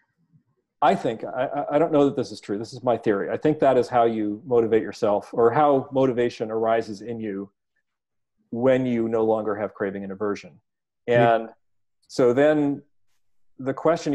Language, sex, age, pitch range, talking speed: English, male, 40-59, 115-145 Hz, 175 wpm